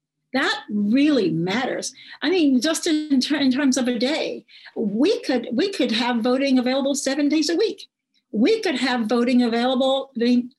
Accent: American